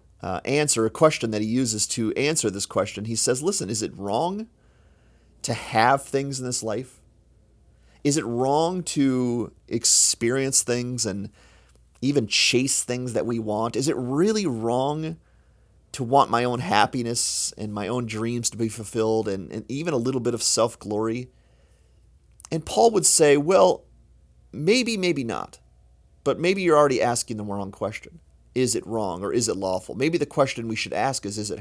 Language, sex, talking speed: English, male, 175 wpm